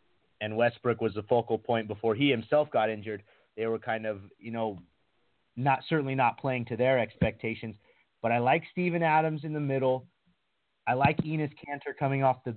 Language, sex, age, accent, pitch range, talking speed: English, male, 30-49, American, 110-130 Hz, 185 wpm